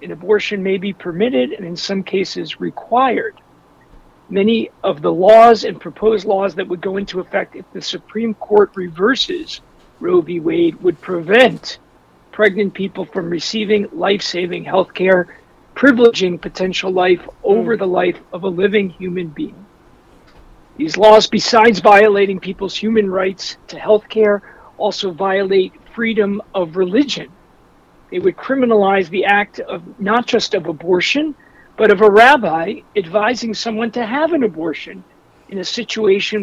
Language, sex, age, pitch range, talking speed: English, male, 50-69, 185-225 Hz, 145 wpm